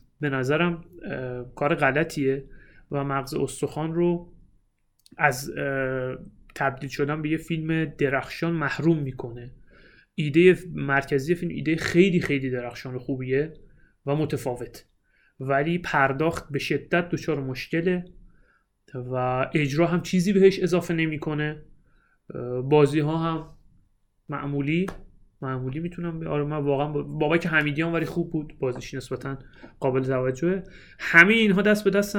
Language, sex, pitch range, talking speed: Persian, male, 135-170 Hz, 120 wpm